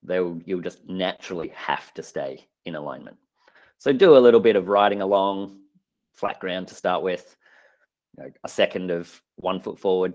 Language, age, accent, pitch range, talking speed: English, 30-49, Australian, 85-115 Hz, 175 wpm